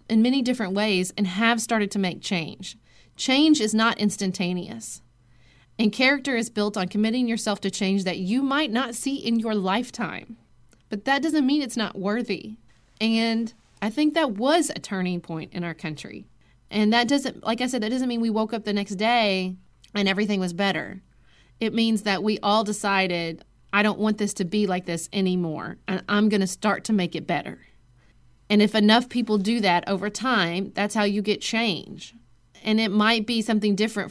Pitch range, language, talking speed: 175-220 Hz, English, 195 wpm